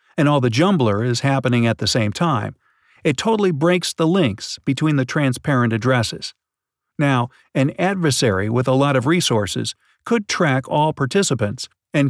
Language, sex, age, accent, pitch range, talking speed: English, male, 50-69, American, 120-160 Hz, 160 wpm